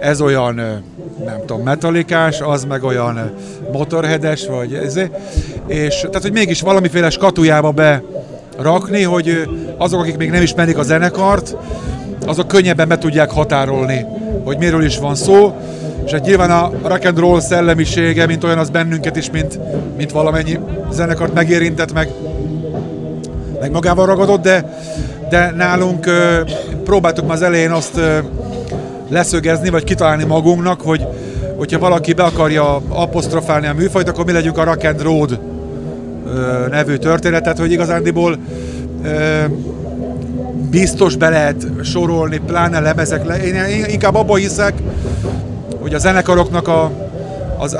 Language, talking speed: Hungarian, 135 wpm